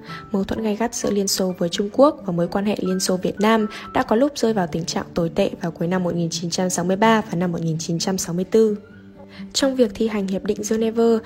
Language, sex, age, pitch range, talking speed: Vietnamese, female, 10-29, 185-225 Hz, 220 wpm